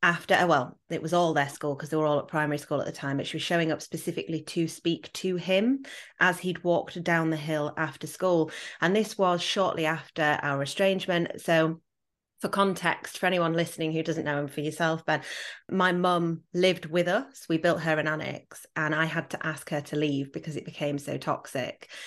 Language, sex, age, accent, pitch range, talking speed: English, female, 30-49, British, 150-180 Hz, 210 wpm